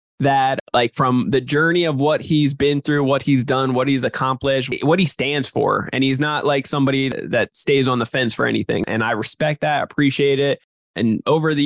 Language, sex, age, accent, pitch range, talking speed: English, male, 20-39, American, 130-150 Hz, 210 wpm